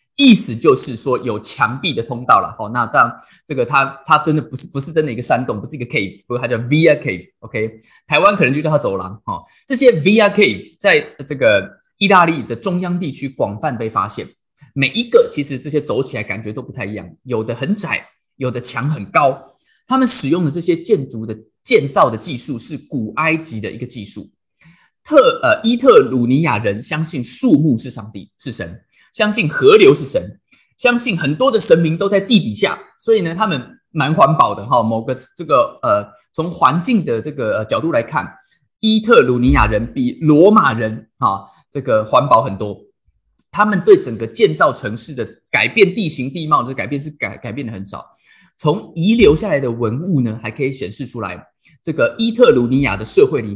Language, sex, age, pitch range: Chinese, male, 20-39, 125-205 Hz